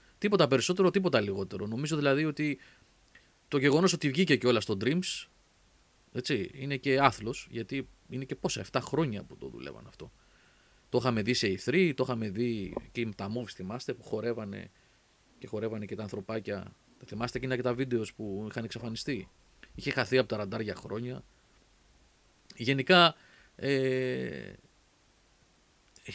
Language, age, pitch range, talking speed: Greek, 30-49, 105-140 Hz, 145 wpm